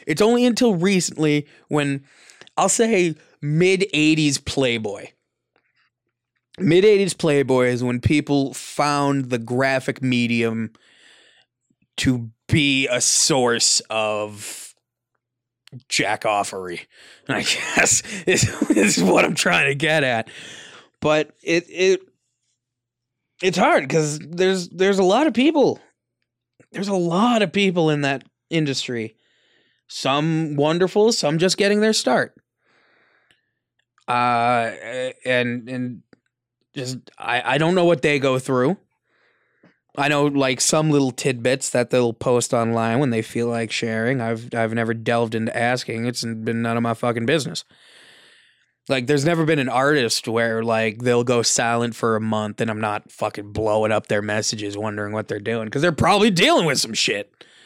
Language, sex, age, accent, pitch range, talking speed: English, male, 20-39, American, 115-155 Hz, 140 wpm